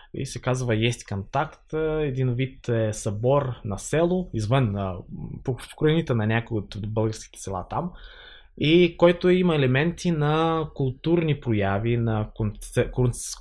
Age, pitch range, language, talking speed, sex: 20-39, 105-155 Hz, Bulgarian, 130 wpm, male